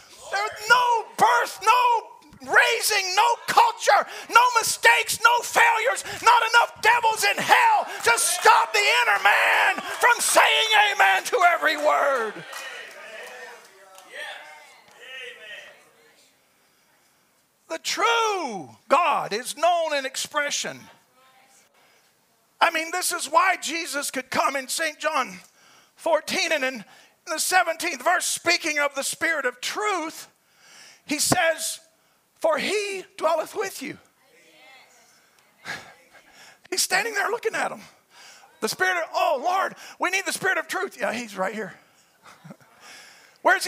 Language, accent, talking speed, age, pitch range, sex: English, American, 120 wpm, 40-59, 305-420 Hz, male